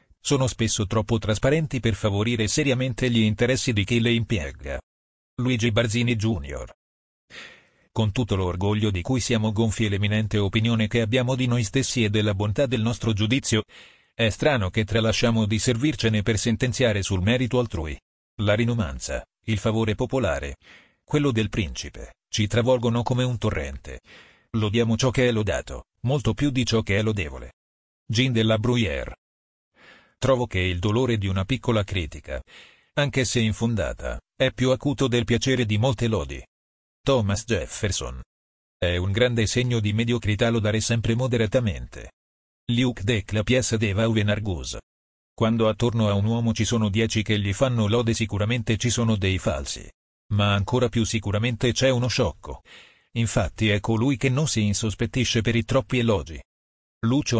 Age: 40-59